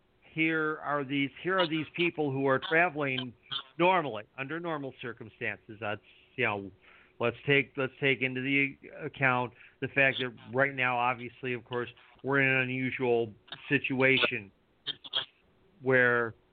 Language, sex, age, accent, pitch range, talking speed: English, male, 50-69, American, 120-140 Hz, 140 wpm